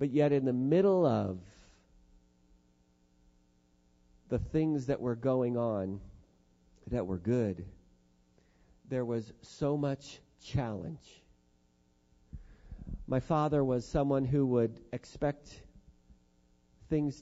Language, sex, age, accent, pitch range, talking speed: English, male, 50-69, American, 95-130 Hz, 100 wpm